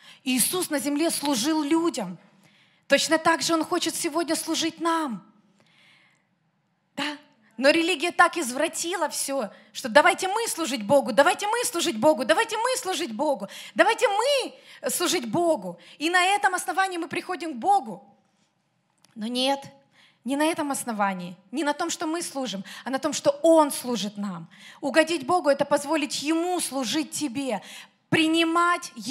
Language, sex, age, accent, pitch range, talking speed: Russian, female, 20-39, native, 240-330 Hz, 155 wpm